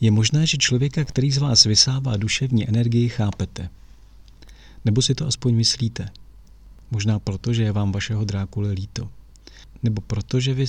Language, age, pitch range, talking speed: Czech, 40-59, 105-125 Hz, 155 wpm